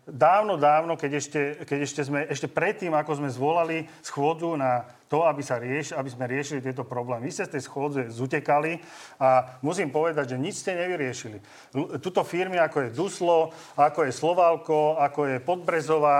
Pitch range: 140-165 Hz